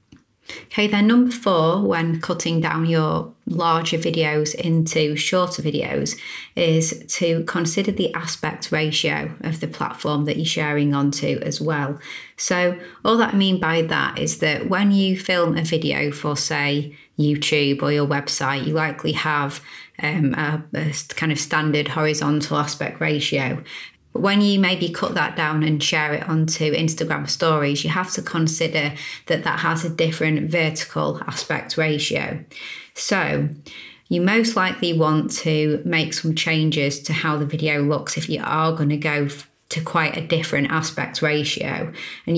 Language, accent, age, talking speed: English, British, 30-49, 155 wpm